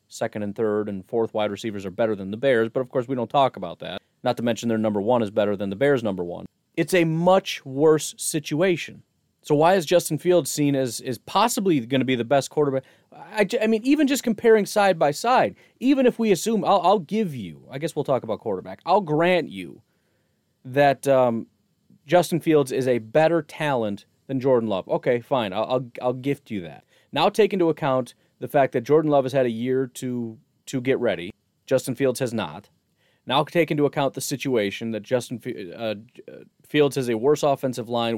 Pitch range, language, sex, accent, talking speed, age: 115-155 Hz, English, male, American, 210 wpm, 30-49